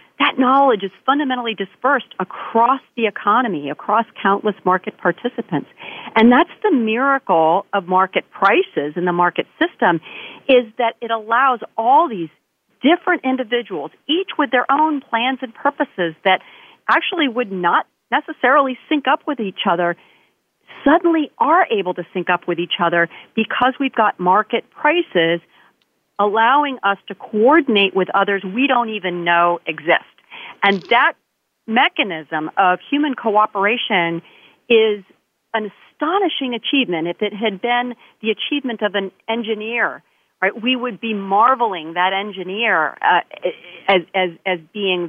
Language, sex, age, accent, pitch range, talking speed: English, female, 40-59, American, 185-260 Hz, 140 wpm